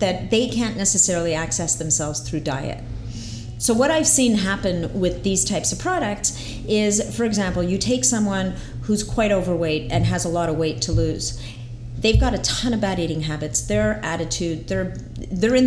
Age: 40-59